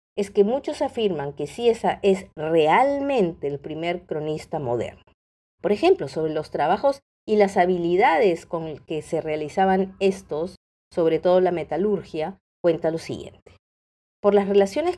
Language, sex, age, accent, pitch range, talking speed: Spanish, female, 50-69, American, 155-205 Hz, 145 wpm